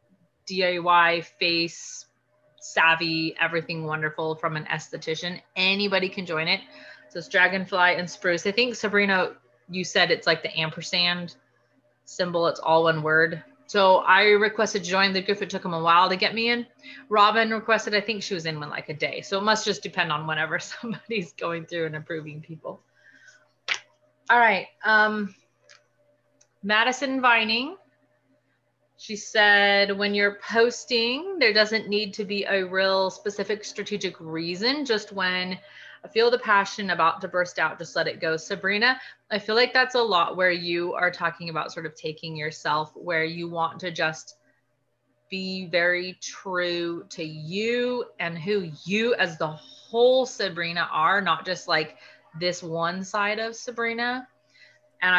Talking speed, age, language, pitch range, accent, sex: 160 wpm, 30-49, English, 165-210 Hz, American, female